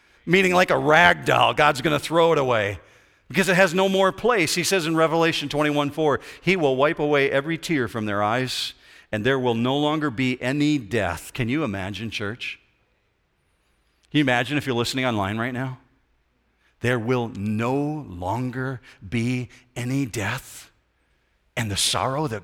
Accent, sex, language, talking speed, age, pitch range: American, male, English, 165 wpm, 50-69, 120-170 Hz